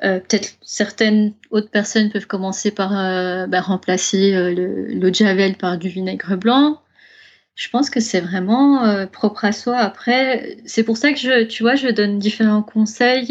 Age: 20-39